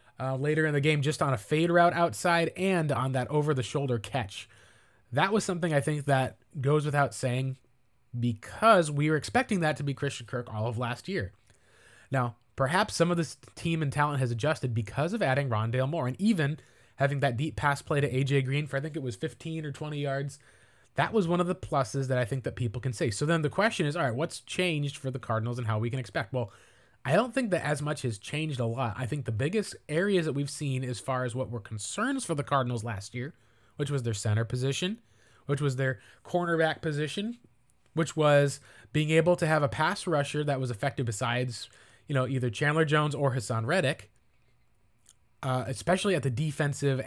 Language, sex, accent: English, male, American